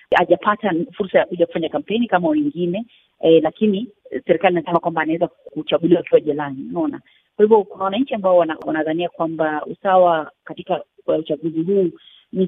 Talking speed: 175 wpm